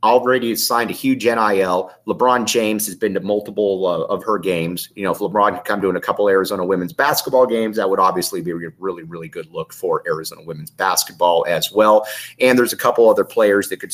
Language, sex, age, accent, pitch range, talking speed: English, male, 30-49, American, 100-145 Hz, 230 wpm